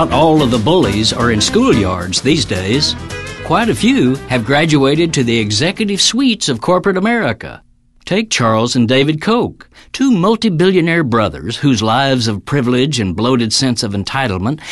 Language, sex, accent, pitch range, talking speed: English, male, American, 110-170 Hz, 160 wpm